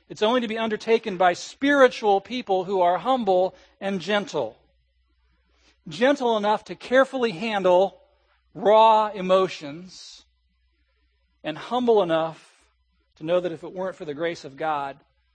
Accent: American